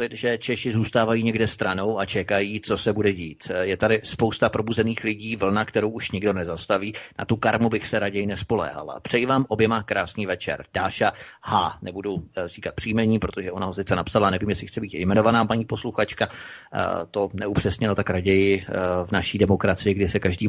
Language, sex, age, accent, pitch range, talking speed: Czech, male, 30-49, native, 100-115 Hz, 175 wpm